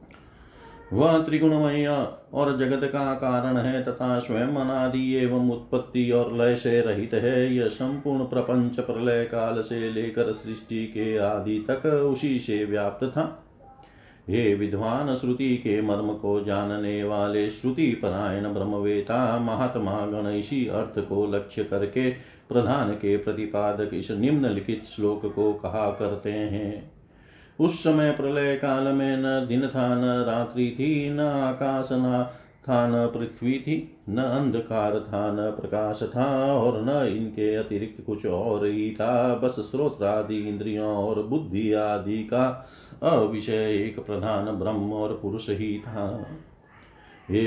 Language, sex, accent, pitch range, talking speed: Hindi, male, native, 105-130 Hz, 135 wpm